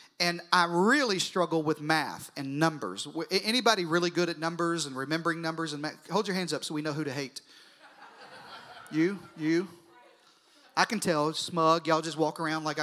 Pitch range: 155-195 Hz